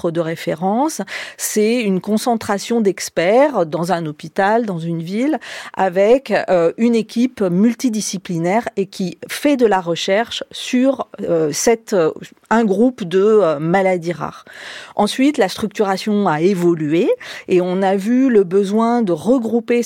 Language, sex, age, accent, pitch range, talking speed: French, female, 40-59, French, 165-220 Hz, 130 wpm